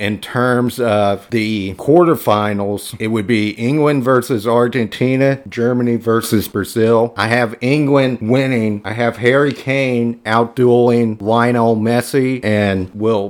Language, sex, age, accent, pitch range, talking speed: English, male, 40-59, American, 110-125 Hz, 120 wpm